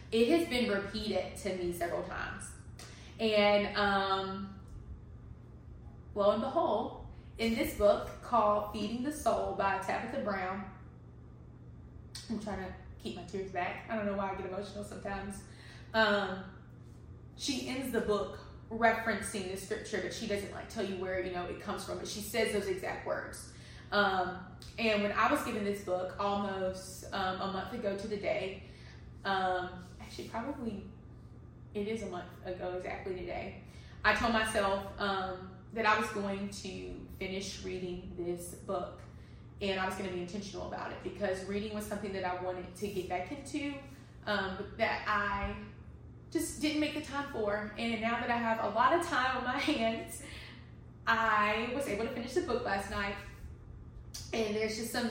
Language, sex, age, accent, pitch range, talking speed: English, female, 20-39, American, 190-225 Hz, 170 wpm